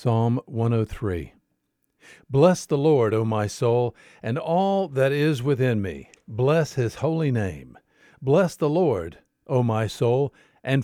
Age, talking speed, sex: 50-69, 140 wpm, male